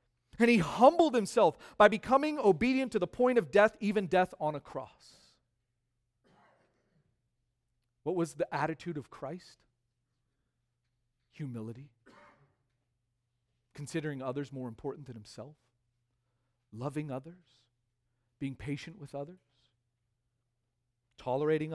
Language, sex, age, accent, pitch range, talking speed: English, male, 40-59, American, 120-155 Hz, 100 wpm